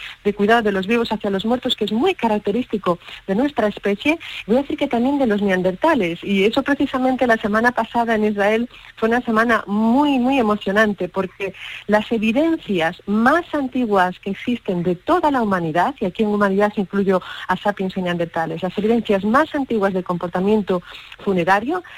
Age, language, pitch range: 40-59, Spanish, 195-245 Hz